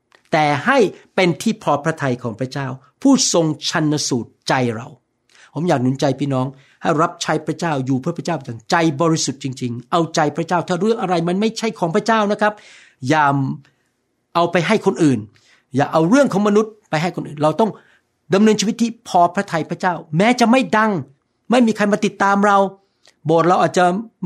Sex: male